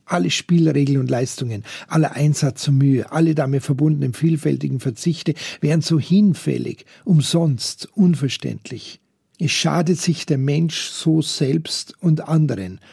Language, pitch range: German, 140-175 Hz